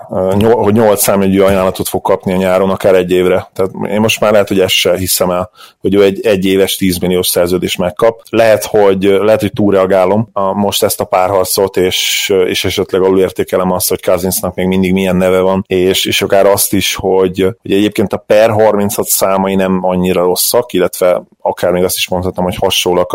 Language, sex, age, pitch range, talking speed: Hungarian, male, 30-49, 95-100 Hz, 190 wpm